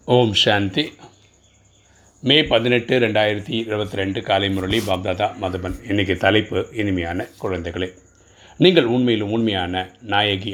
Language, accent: Tamil, native